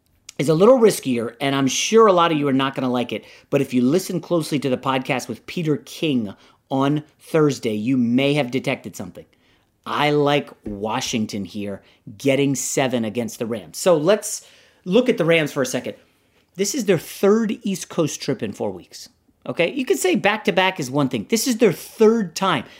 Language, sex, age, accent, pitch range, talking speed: English, male, 30-49, American, 130-195 Hz, 200 wpm